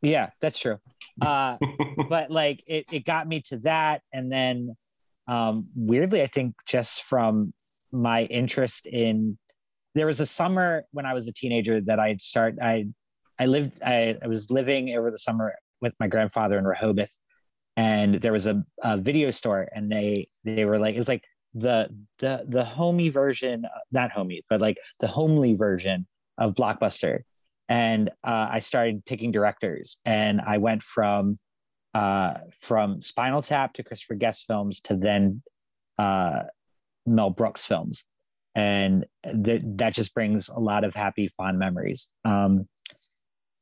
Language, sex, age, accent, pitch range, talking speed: English, male, 30-49, American, 105-135 Hz, 160 wpm